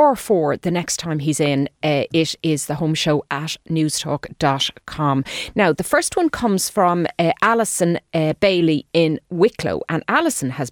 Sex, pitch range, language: female, 150-205 Hz, English